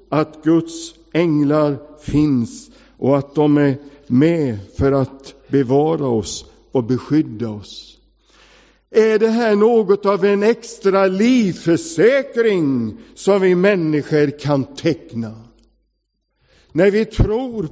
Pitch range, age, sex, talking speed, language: 150-200 Hz, 60-79, male, 110 wpm, English